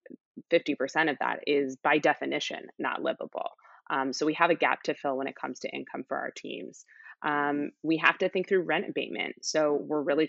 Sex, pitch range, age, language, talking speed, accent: female, 140-160 Hz, 20-39, English, 210 wpm, American